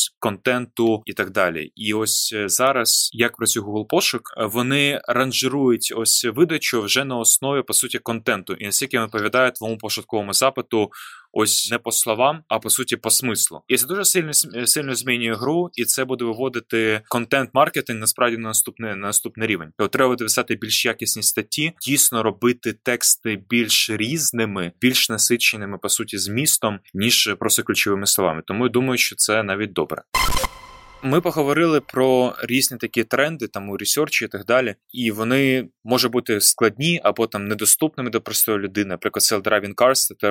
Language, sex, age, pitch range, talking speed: Ukrainian, male, 20-39, 105-130 Hz, 160 wpm